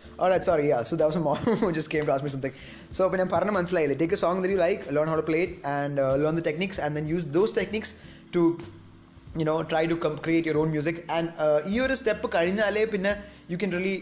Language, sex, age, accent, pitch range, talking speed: English, male, 20-39, Indian, 150-170 Hz, 250 wpm